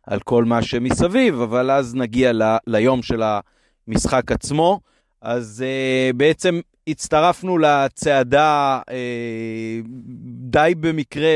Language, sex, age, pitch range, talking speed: Hebrew, male, 30-49, 120-145 Hz, 90 wpm